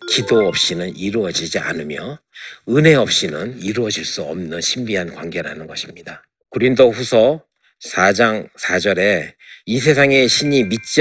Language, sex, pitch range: Korean, male, 105-140 Hz